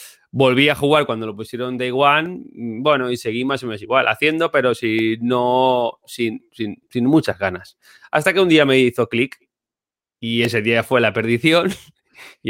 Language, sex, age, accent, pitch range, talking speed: Spanish, male, 20-39, Spanish, 110-130 Hz, 180 wpm